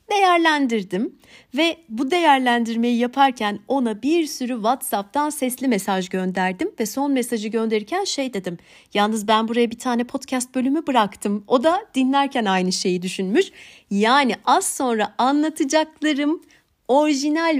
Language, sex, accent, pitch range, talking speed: Turkish, female, native, 200-280 Hz, 125 wpm